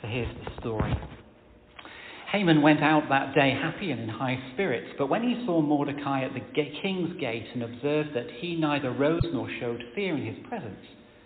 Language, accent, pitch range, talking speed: English, British, 130-180 Hz, 185 wpm